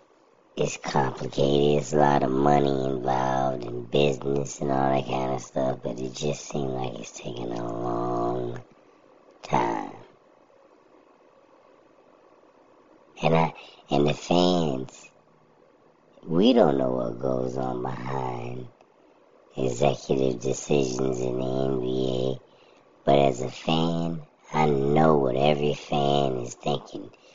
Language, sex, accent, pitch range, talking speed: English, male, American, 65-75 Hz, 115 wpm